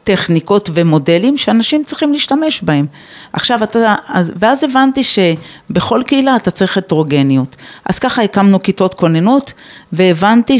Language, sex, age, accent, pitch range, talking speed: Hebrew, female, 40-59, native, 165-225 Hz, 125 wpm